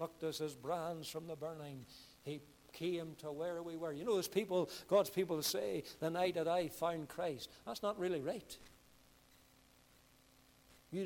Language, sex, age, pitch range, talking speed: English, male, 60-79, 155-230 Hz, 170 wpm